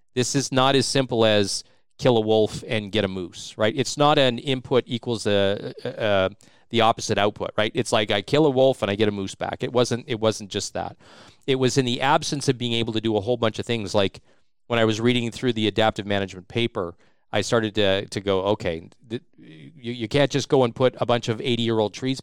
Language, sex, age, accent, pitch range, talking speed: English, male, 40-59, American, 105-130 Hz, 245 wpm